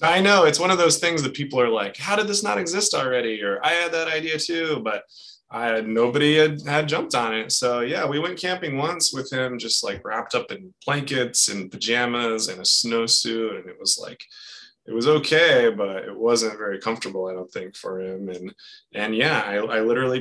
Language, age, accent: English, 20-39, American